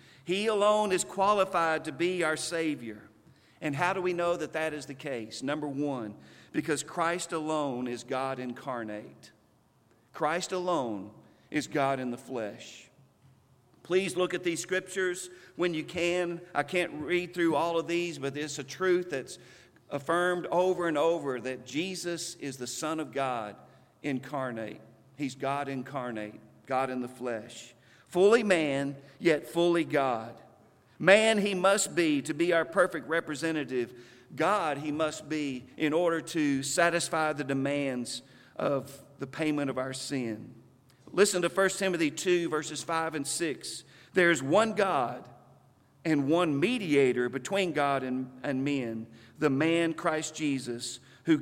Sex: male